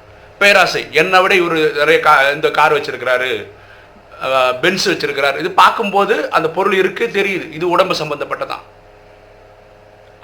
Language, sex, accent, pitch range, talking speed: Tamil, male, native, 125-195 Hz, 105 wpm